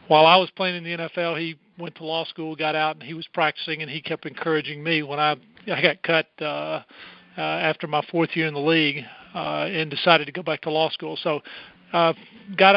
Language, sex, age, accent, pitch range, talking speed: English, male, 50-69, American, 155-175 Hz, 230 wpm